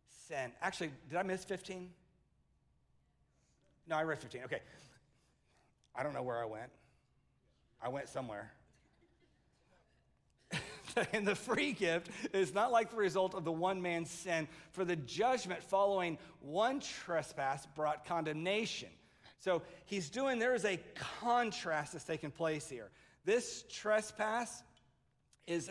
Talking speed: 130 wpm